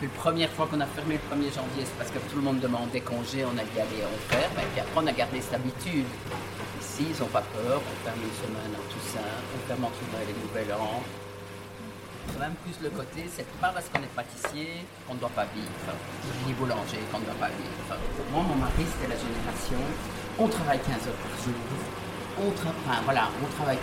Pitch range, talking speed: 105-145 Hz, 225 wpm